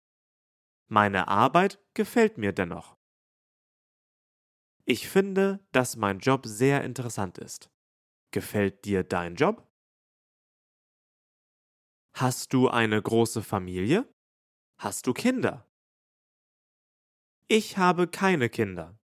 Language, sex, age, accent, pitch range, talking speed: English, male, 30-49, German, 100-145 Hz, 90 wpm